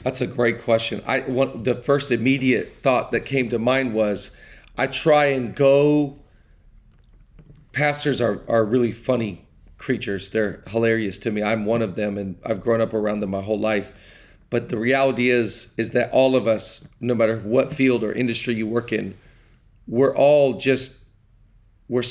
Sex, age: male, 40-59